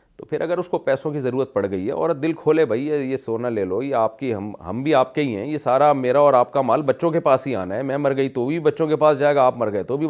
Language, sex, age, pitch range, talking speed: Urdu, male, 40-59, 115-150 Hz, 340 wpm